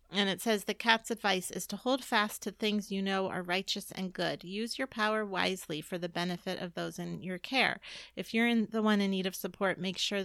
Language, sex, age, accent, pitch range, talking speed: English, female, 30-49, American, 190-225 Hz, 240 wpm